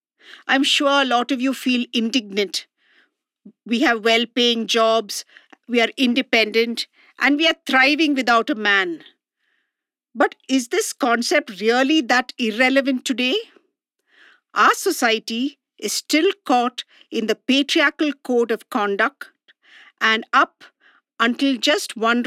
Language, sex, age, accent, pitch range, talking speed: English, female, 50-69, Indian, 230-305 Hz, 125 wpm